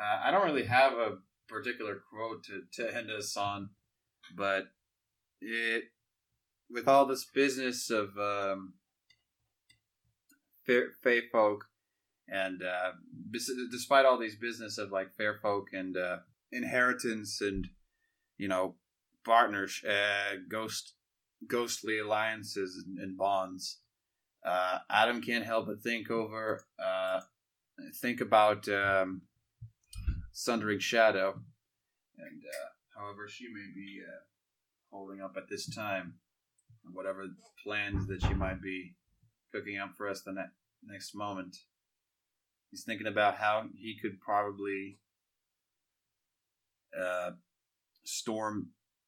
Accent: American